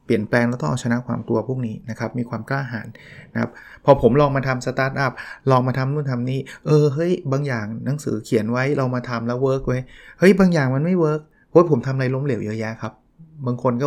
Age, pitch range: 20-39, 115-140 Hz